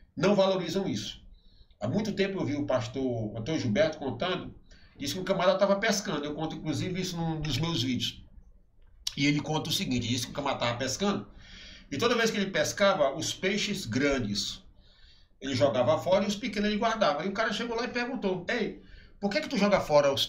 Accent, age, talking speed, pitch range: Brazilian, 60-79, 205 wpm, 120-190 Hz